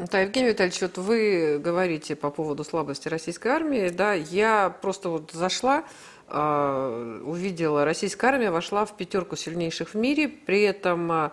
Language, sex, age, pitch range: Russian, female, 50-69, 160-205 Hz